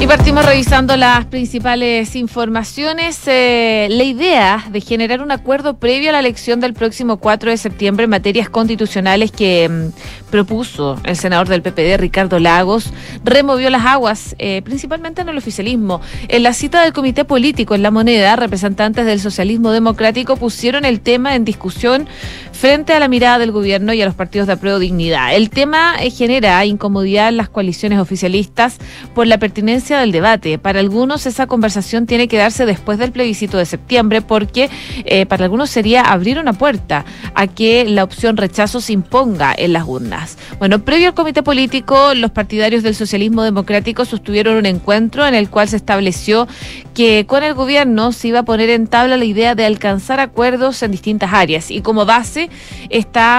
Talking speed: 175 wpm